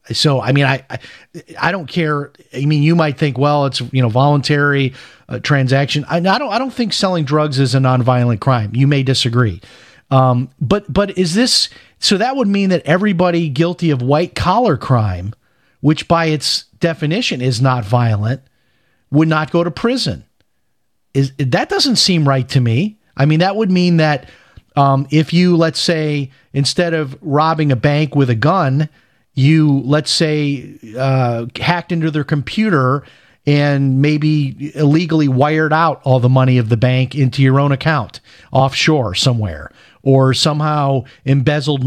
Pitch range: 130-160 Hz